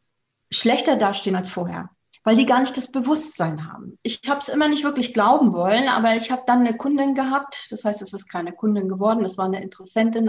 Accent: German